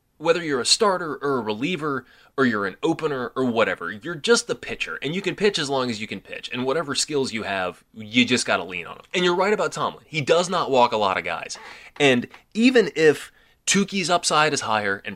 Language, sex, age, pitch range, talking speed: English, male, 20-39, 120-155 Hz, 240 wpm